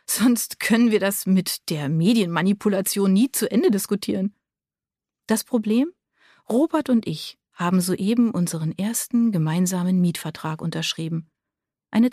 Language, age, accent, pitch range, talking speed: German, 40-59, German, 170-225 Hz, 120 wpm